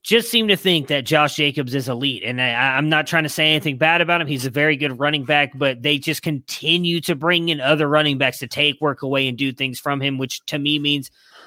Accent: American